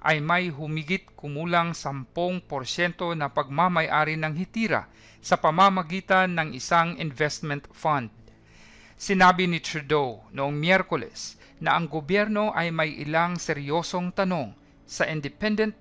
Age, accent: 50-69, native